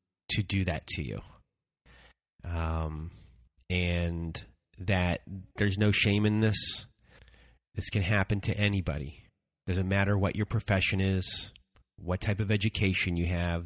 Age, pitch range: 30-49, 85-100 Hz